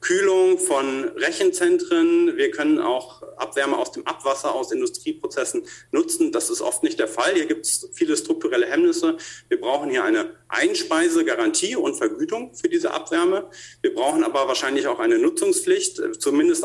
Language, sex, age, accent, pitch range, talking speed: German, male, 40-59, German, 330-365 Hz, 155 wpm